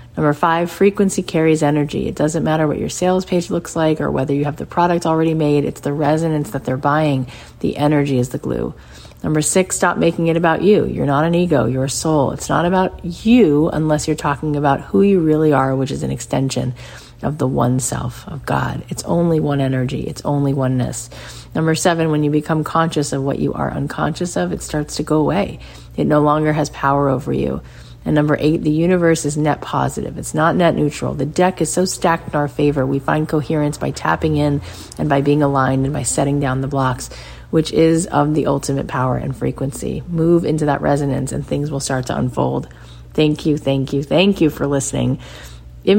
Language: English